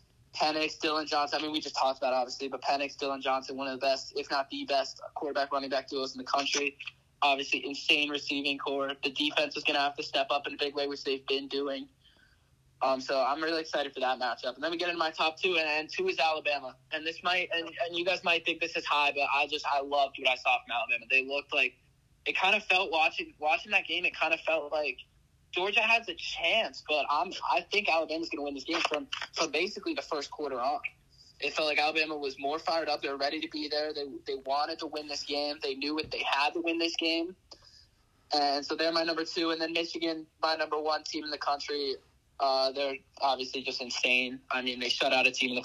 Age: 10-29